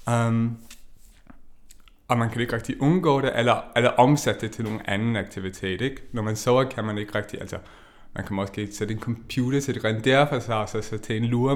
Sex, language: male, Danish